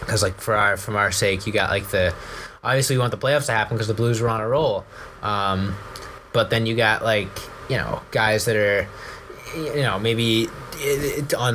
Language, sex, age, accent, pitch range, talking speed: English, male, 20-39, American, 95-115 Hz, 210 wpm